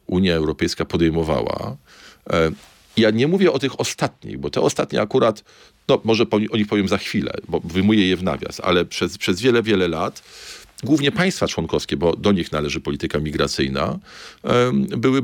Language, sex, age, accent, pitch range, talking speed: Polish, male, 40-59, native, 80-105 Hz, 160 wpm